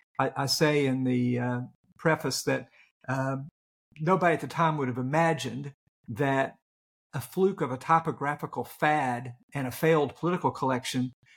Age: 50-69